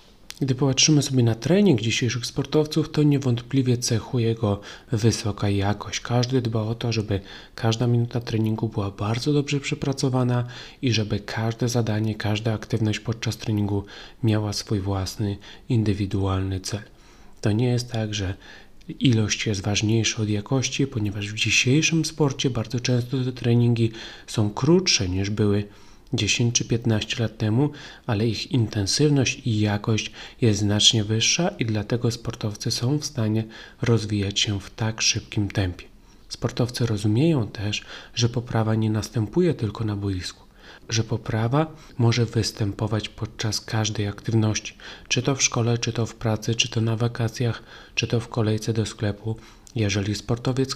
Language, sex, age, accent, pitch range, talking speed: Polish, male, 30-49, native, 105-125 Hz, 145 wpm